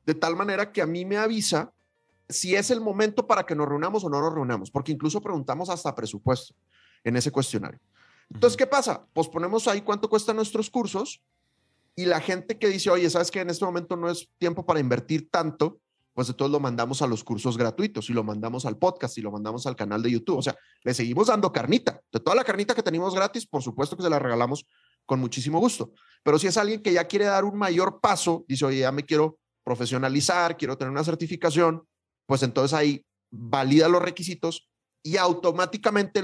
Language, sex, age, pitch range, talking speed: Spanish, male, 30-49, 130-185 Hz, 210 wpm